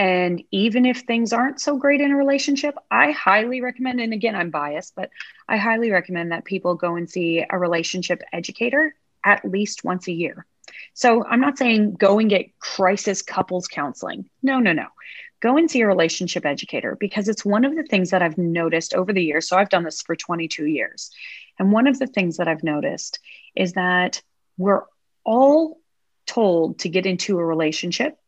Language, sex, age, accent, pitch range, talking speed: English, female, 30-49, American, 175-235 Hz, 190 wpm